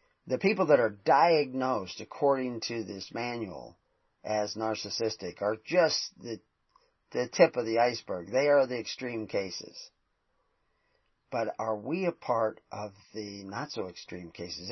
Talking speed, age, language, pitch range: 135 wpm, 40-59, English, 105-130 Hz